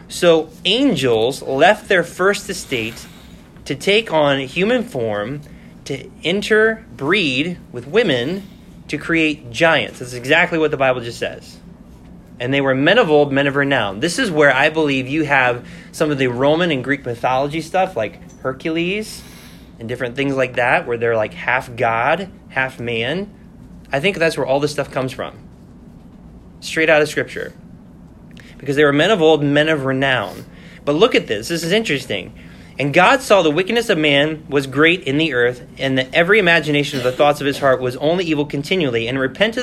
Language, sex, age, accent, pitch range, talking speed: English, male, 20-39, American, 130-165 Hz, 185 wpm